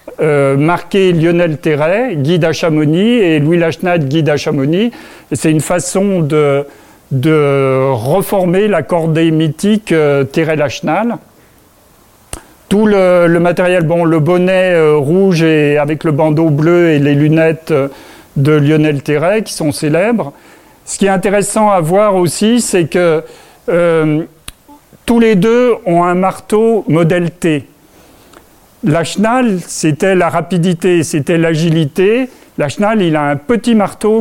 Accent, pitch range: French, 155-195 Hz